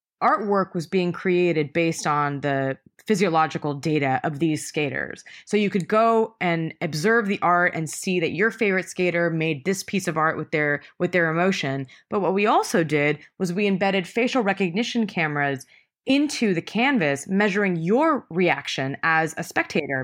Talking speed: 170 wpm